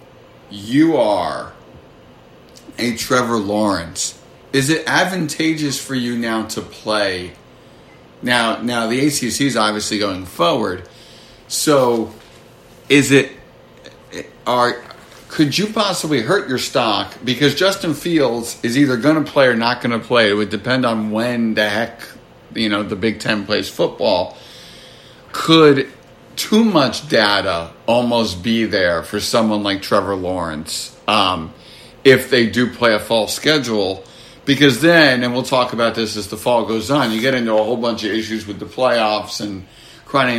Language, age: English, 50-69